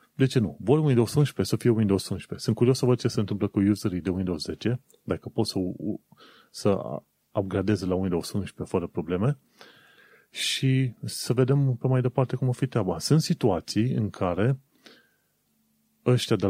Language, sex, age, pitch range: Romanian, male, 30-49, 100-125 Hz